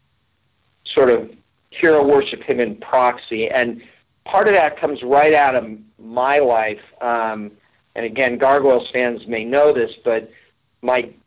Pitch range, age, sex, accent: 110-135 Hz, 40-59, male, American